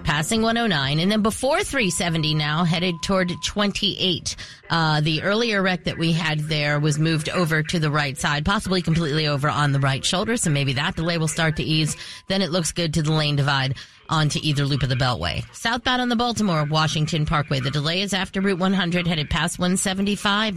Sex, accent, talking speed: female, American, 200 wpm